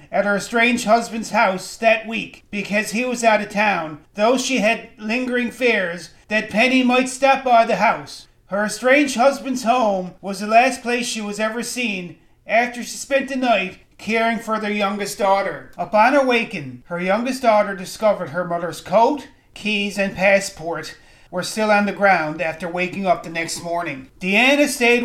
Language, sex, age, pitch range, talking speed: English, male, 40-59, 190-235 Hz, 175 wpm